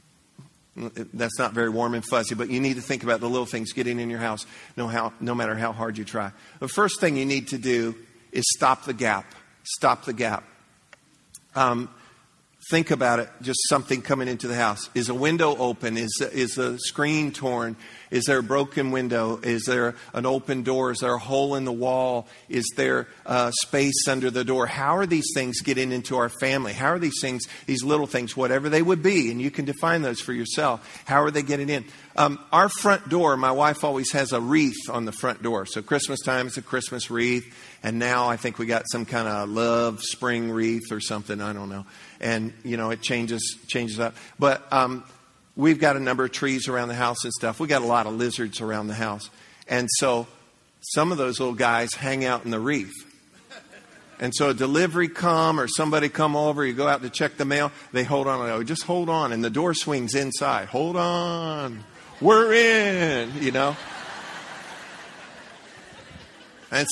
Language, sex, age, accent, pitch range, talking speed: English, male, 50-69, American, 115-145 Hz, 205 wpm